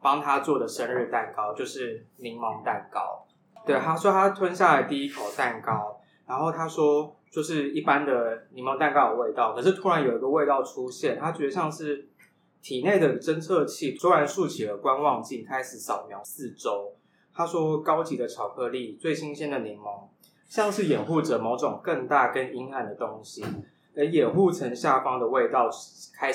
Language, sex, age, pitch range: Chinese, male, 20-39, 140-185 Hz